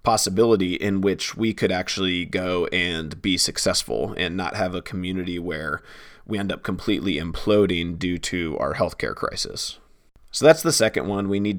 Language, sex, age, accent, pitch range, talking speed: English, male, 30-49, American, 95-110 Hz, 170 wpm